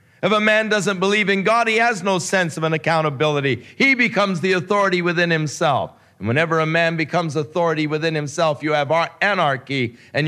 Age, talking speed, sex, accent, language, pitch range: 50-69, 185 wpm, male, American, English, 110-155 Hz